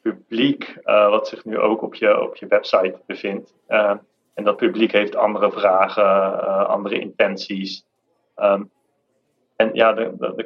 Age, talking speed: 30-49, 150 wpm